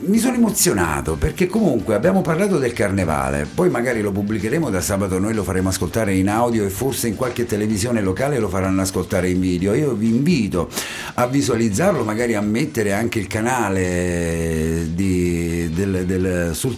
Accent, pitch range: native, 90-135 Hz